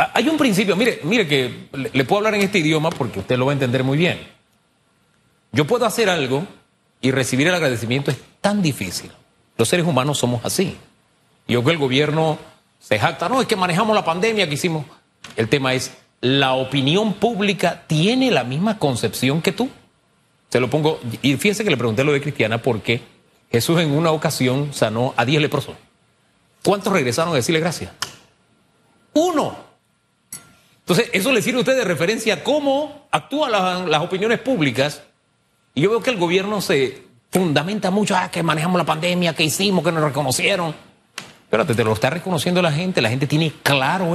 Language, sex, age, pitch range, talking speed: Spanish, male, 40-59, 135-195 Hz, 185 wpm